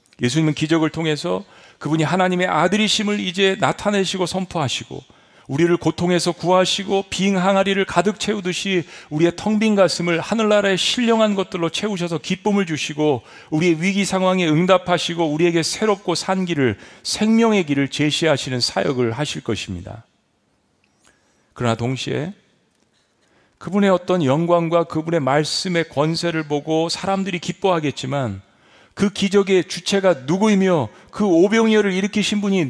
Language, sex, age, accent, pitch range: Korean, male, 40-59, native, 130-190 Hz